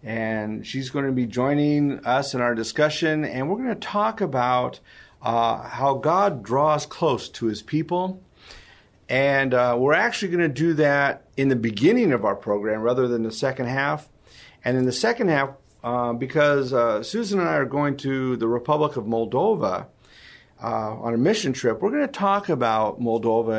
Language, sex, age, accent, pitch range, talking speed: English, male, 40-59, American, 115-140 Hz, 185 wpm